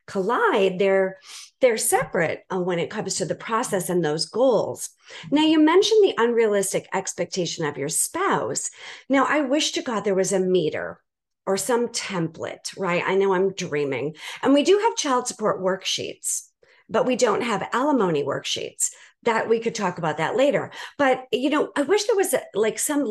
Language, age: English, 50-69